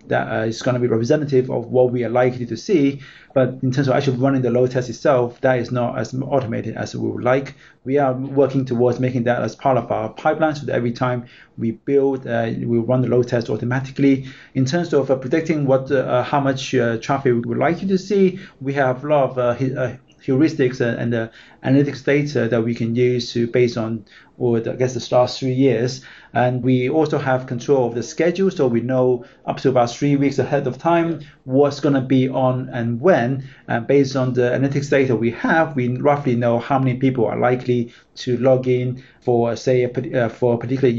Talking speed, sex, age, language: 225 wpm, male, 30-49, English